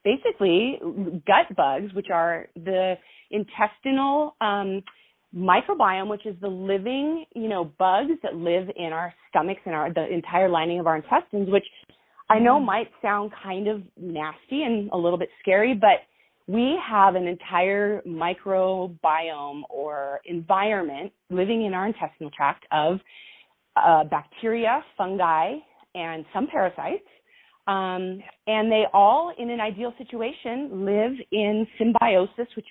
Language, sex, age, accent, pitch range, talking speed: English, female, 30-49, American, 175-235 Hz, 135 wpm